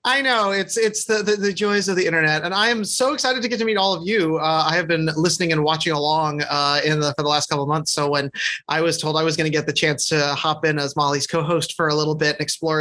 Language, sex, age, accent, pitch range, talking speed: English, male, 30-49, American, 160-205 Hz, 300 wpm